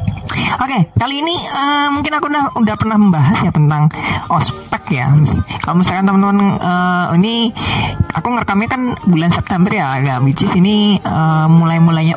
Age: 20-39